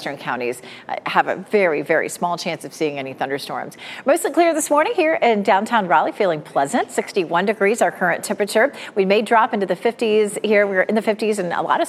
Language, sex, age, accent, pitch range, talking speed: English, female, 40-59, American, 175-245 Hz, 205 wpm